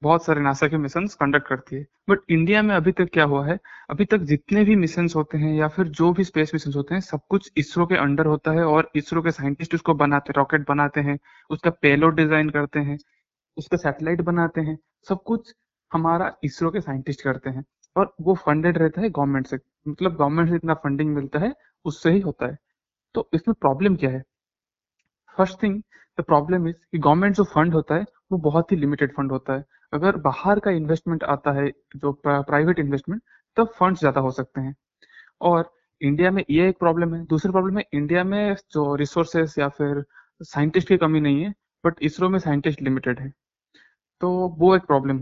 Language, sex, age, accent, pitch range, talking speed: Hindi, male, 20-39, native, 145-180 Hz, 200 wpm